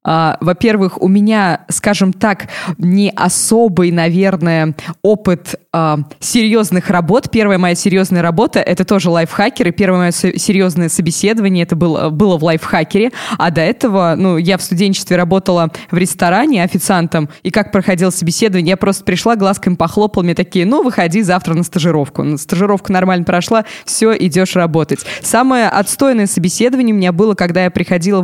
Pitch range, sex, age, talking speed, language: 175-210 Hz, female, 20-39, 150 wpm, Russian